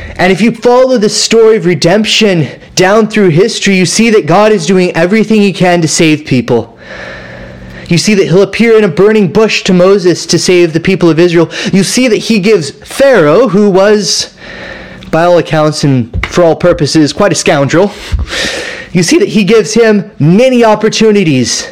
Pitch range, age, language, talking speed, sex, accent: 135-200 Hz, 20-39, English, 180 wpm, male, American